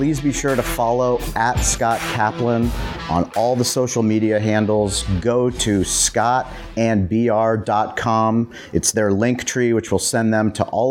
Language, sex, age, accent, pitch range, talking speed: English, male, 30-49, American, 100-125 Hz, 150 wpm